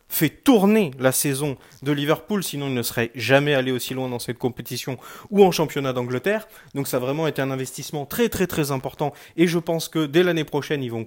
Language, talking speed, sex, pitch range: French, 220 wpm, male, 135-180 Hz